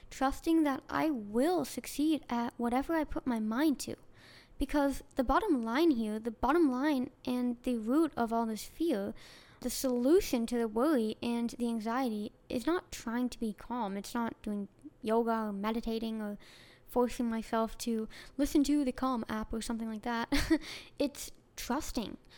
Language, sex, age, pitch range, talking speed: English, female, 10-29, 235-290 Hz, 165 wpm